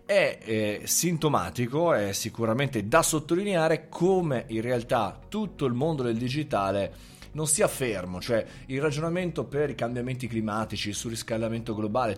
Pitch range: 105-150 Hz